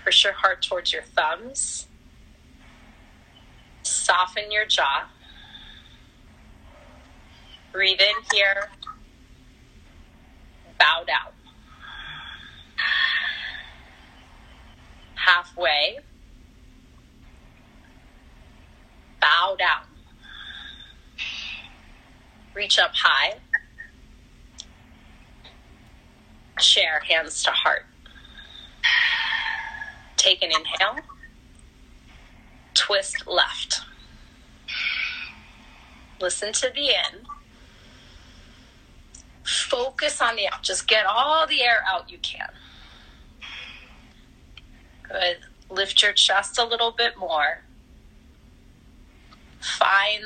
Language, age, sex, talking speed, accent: English, 30-49, female, 65 wpm, American